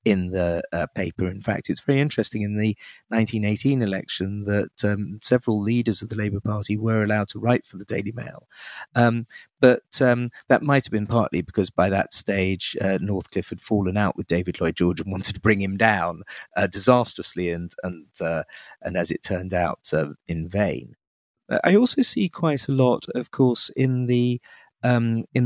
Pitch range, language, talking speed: 100-120 Hz, English, 185 wpm